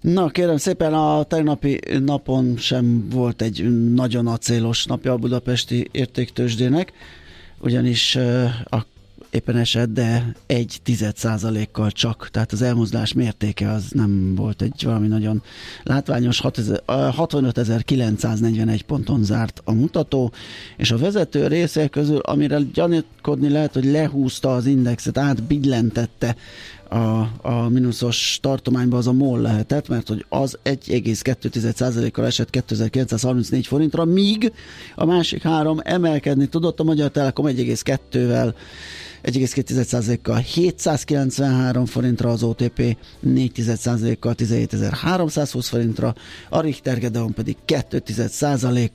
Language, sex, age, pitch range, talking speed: Hungarian, male, 30-49, 115-140 Hz, 115 wpm